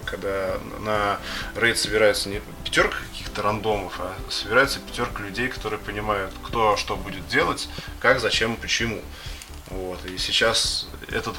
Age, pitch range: 20-39, 95-110 Hz